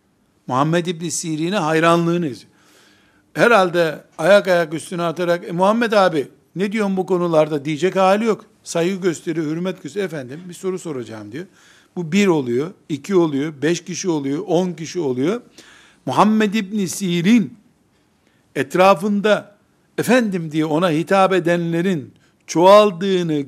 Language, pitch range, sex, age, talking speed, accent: Turkish, 140-195 Hz, male, 60-79, 130 wpm, native